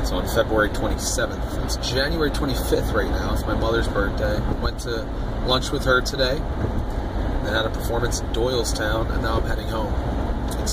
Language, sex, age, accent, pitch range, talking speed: English, male, 30-49, American, 65-105 Hz, 170 wpm